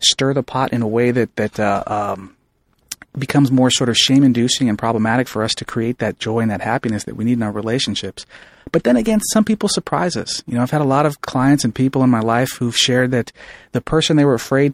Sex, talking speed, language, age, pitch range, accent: male, 245 wpm, English, 30-49, 115-140 Hz, American